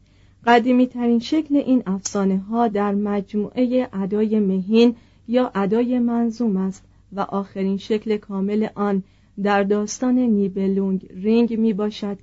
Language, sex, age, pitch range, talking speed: Persian, female, 40-59, 195-235 Hz, 115 wpm